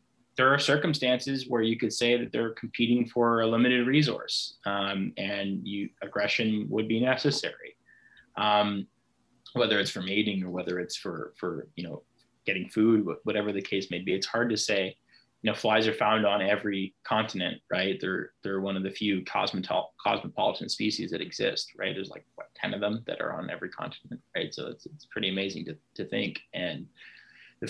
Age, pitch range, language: 20-39, 100-125 Hz, English